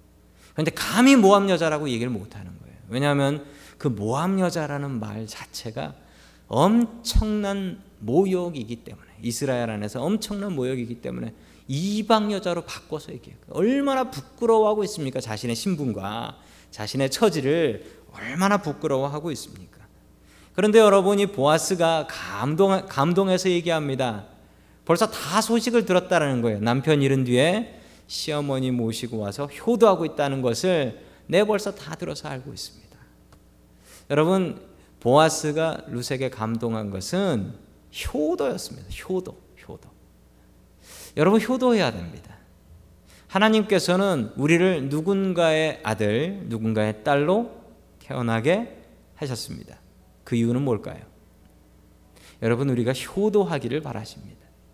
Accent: native